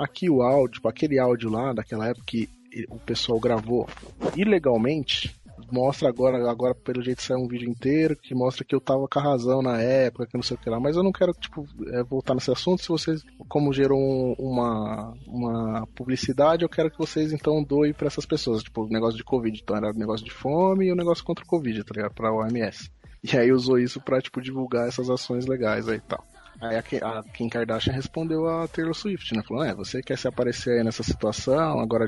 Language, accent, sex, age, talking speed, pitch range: Portuguese, Brazilian, male, 20-39, 225 wpm, 115-150 Hz